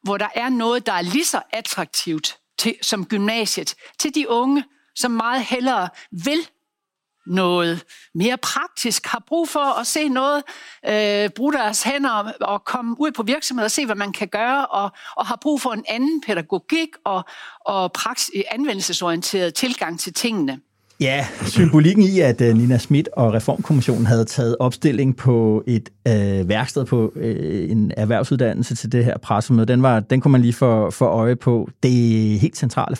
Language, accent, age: Danish, native, 60-79